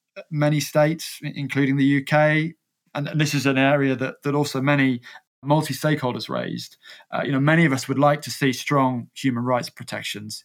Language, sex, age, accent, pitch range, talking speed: English, male, 20-39, British, 135-160 Hz, 180 wpm